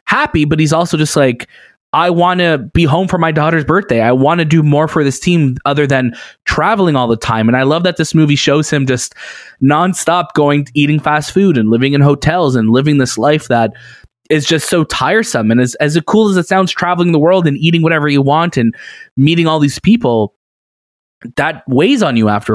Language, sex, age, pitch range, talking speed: English, male, 20-39, 120-155 Hz, 220 wpm